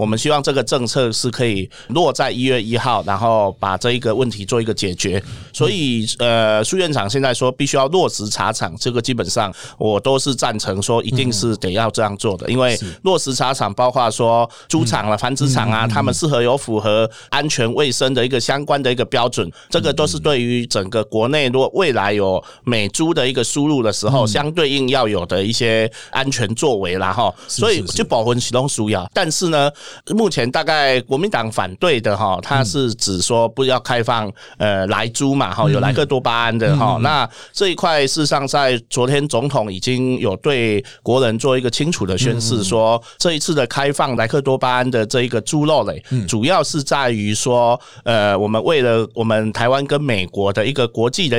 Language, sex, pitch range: Chinese, male, 110-135 Hz